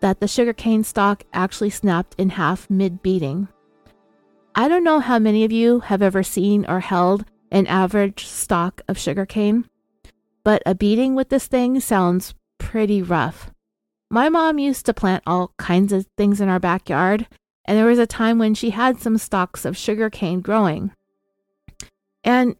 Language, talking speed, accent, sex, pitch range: English, 165 wpm, American, female, 190-230 Hz